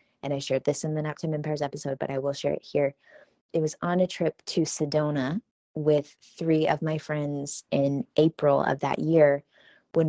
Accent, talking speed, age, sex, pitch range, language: American, 195 wpm, 20-39, female, 150-170 Hz, English